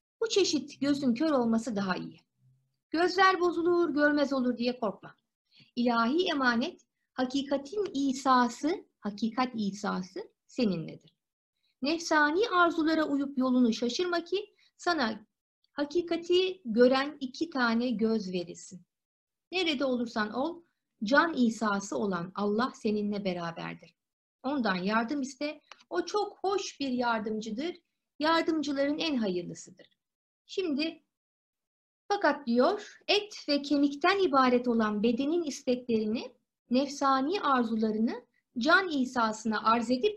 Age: 50-69